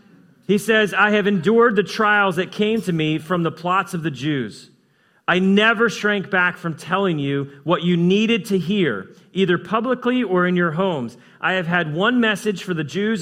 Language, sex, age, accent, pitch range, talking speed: English, male, 40-59, American, 140-185 Hz, 195 wpm